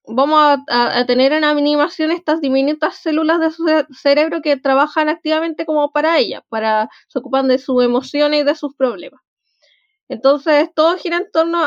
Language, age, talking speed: Spanish, 20-39, 180 wpm